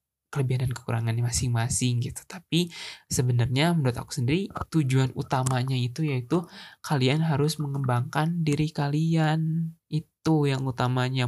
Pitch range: 120-150 Hz